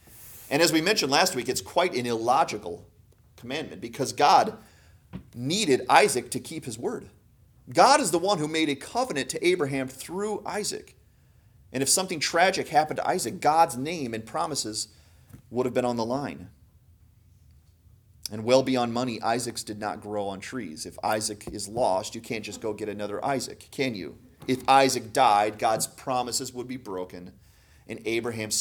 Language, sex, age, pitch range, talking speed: English, male, 30-49, 100-130 Hz, 170 wpm